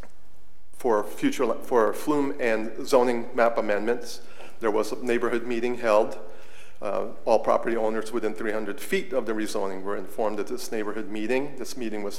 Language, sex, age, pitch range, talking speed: English, male, 40-59, 110-135 Hz, 160 wpm